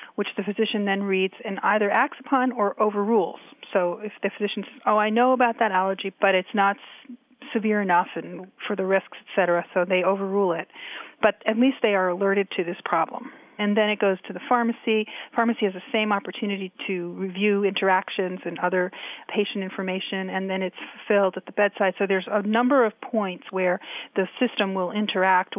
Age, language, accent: 30-49, English, American